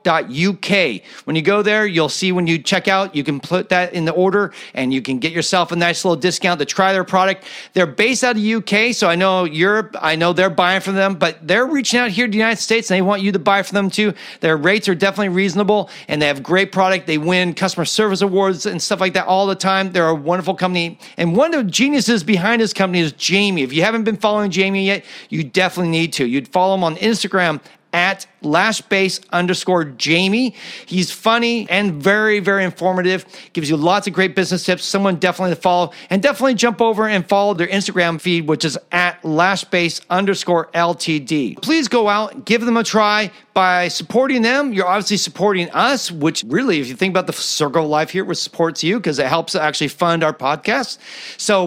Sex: male